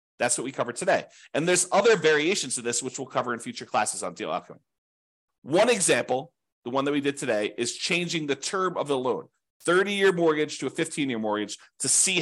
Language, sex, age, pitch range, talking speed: English, male, 40-59, 135-185 Hz, 210 wpm